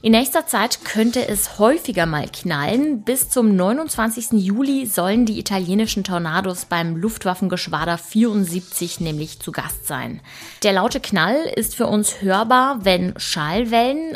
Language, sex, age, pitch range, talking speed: German, female, 20-39, 180-230 Hz, 135 wpm